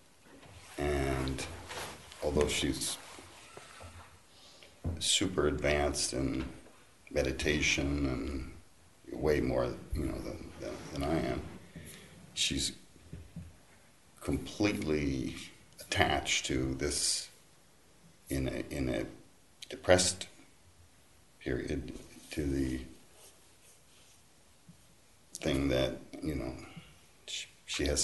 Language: English